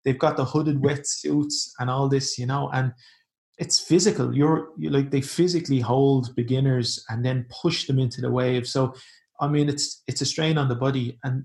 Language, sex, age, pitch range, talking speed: English, male, 20-39, 120-140 Hz, 200 wpm